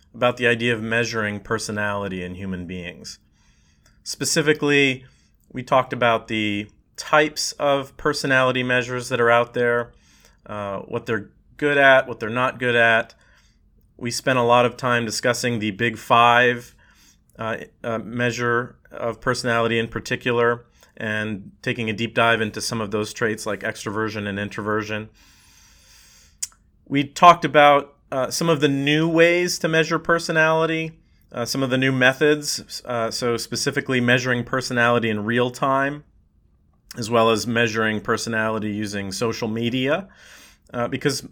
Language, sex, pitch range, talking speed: English, male, 105-130 Hz, 145 wpm